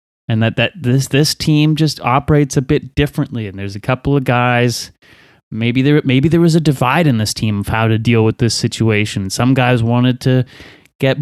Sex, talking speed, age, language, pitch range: male, 210 wpm, 30-49, English, 120-150 Hz